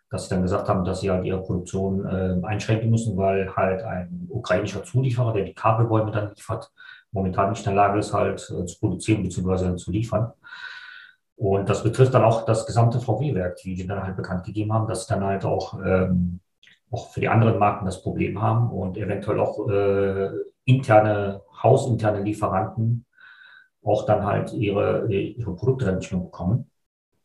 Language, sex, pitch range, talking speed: German, male, 95-115 Hz, 180 wpm